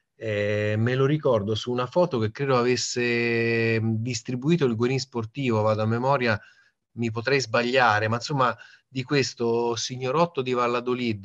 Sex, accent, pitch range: male, native, 110-125 Hz